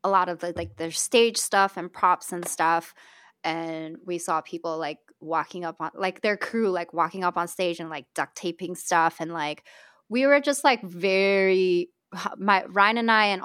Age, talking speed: 20-39, 210 wpm